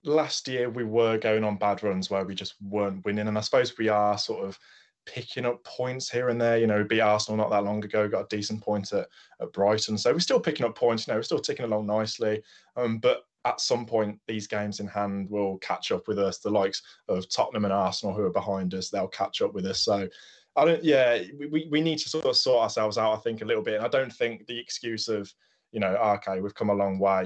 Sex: male